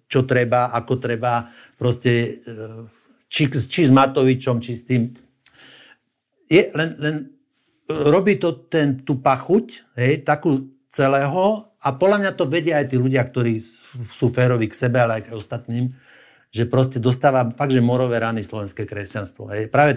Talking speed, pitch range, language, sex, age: 145 wpm, 115-135 Hz, Slovak, male, 60-79